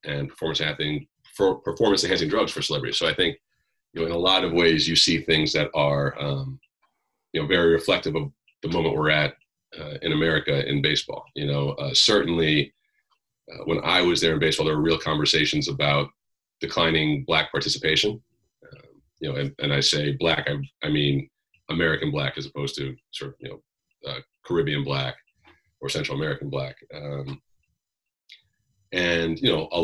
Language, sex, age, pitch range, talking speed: English, male, 30-49, 70-85 Hz, 180 wpm